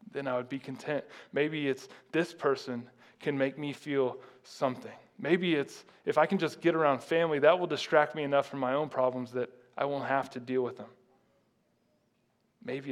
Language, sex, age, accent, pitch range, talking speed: English, male, 20-39, American, 125-135 Hz, 190 wpm